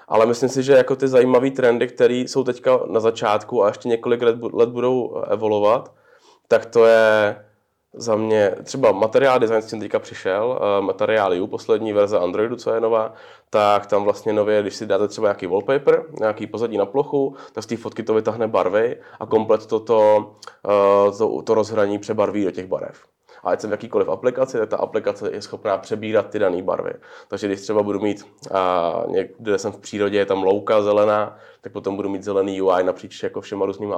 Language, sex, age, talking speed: Czech, male, 20-39, 190 wpm